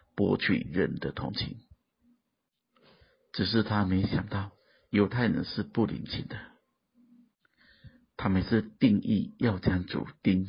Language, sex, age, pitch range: Chinese, male, 50-69, 95-135 Hz